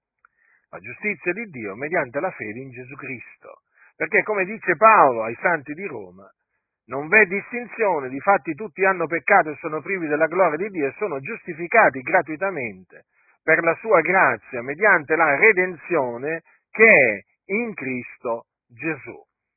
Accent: native